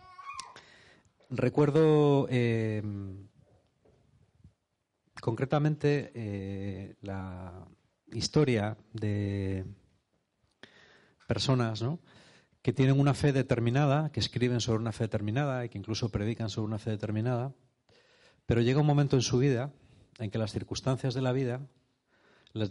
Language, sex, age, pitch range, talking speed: Spanish, male, 30-49, 105-140 Hz, 115 wpm